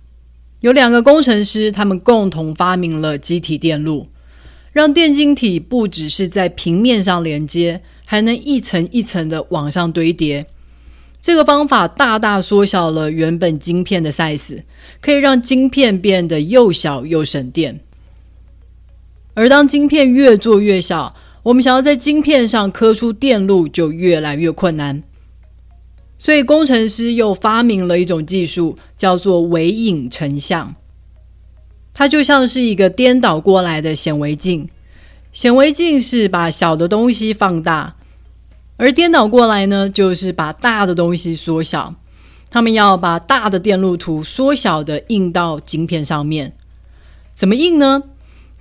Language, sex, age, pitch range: Chinese, female, 30-49, 150-230 Hz